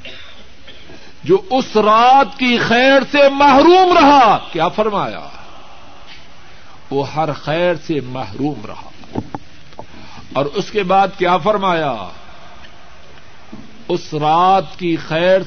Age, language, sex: 60-79, Urdu, male